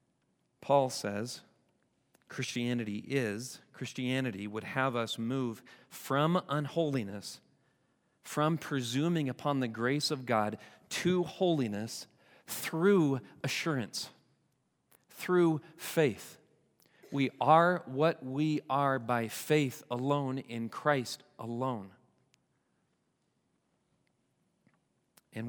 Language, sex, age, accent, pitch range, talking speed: English, male, 40-59, American, 115-140 Hz, 85 wpm